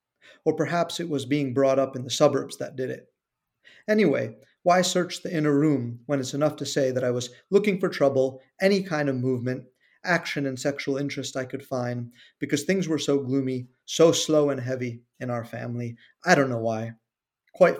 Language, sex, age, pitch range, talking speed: English, male, 30-49, 130-155 Hz, 195 wpm